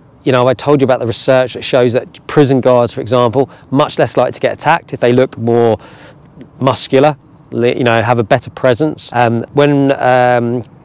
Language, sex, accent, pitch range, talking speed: English, male, British, 120-150 Hz, 195 wpm